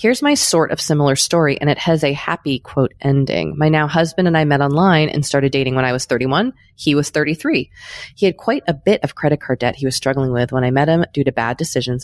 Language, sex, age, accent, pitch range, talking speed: English, female, 20-39, American, 135-175 Hz, 255 wpm